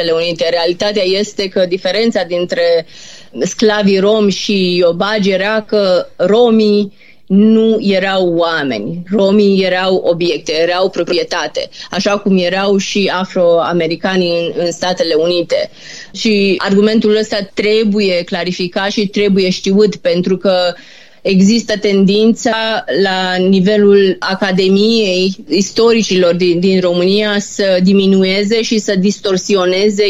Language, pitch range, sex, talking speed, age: Romanian, 180-210 Hz, female, 110 wpm, 20-39